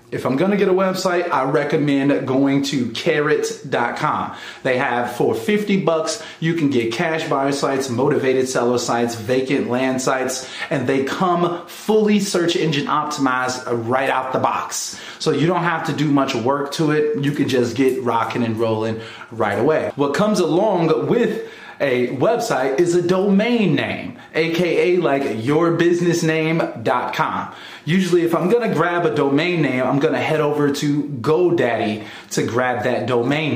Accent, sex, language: American, male, English